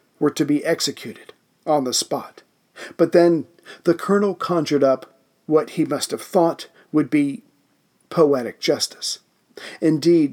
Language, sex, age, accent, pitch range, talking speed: English, male, 50-69, American, 145-165 Hz, 135 wpm